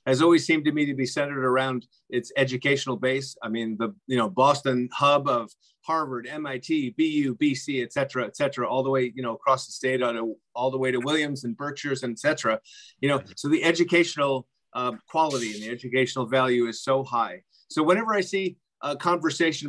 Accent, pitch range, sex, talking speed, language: American, 130-170 Hz, male, 205 wpm, English